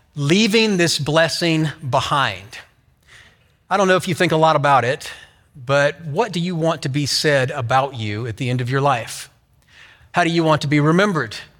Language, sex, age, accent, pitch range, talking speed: English, male, 40-59, American, 140-190 Hz, 190 wpm